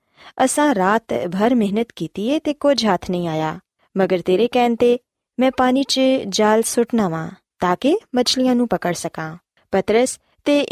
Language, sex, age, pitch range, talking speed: Punjabi, female, 20-39, 180-255 Hz, 135 wpm